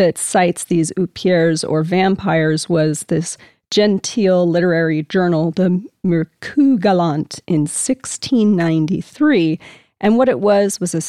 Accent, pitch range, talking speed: American, 165-205 Hz, 115 wpm